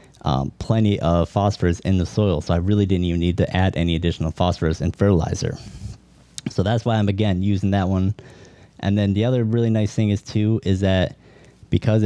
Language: English